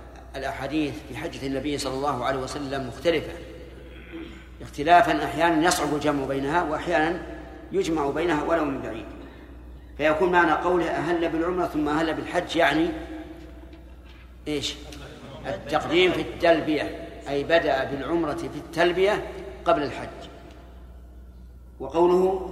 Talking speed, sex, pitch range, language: 110 wpm, male, 135-170 Hz, Arabic